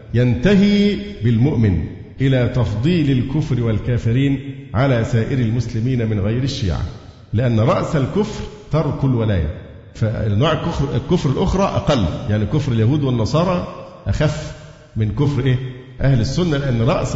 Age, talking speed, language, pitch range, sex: 50-69, 115 wpm, Arabic, 110-145 Hz, male